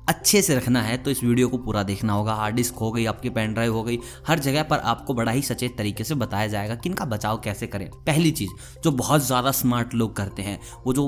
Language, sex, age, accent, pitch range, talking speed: Hindi, male, 20-39, native, 115-145 Hz, 250 wpm